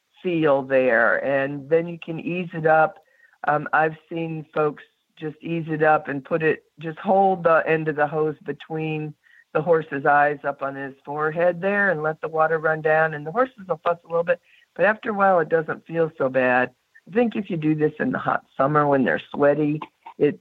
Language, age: English, 50-69